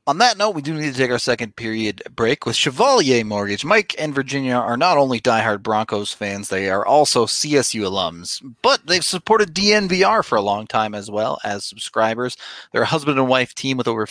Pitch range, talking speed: 110-140 Hz, 210 wpm